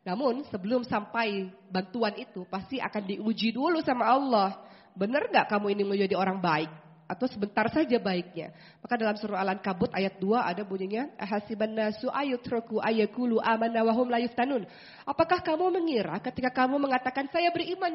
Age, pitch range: 30-49, 200-255 Hz